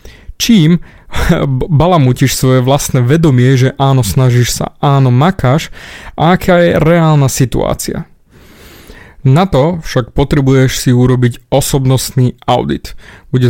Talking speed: 105 wpm